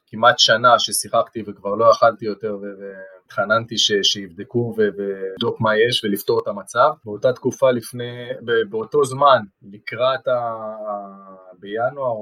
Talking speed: 120 wpm